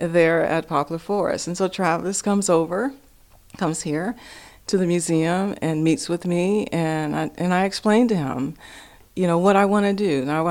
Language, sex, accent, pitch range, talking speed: English, female, American, 170-210 Hz, 185 wpm